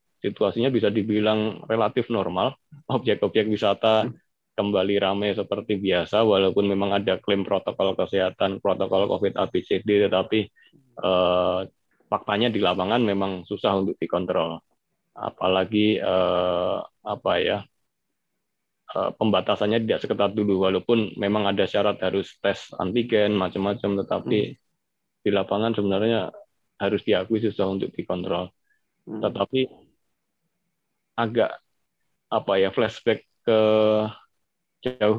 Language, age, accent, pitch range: Indonesian, 20-39, native, 95-110 Hz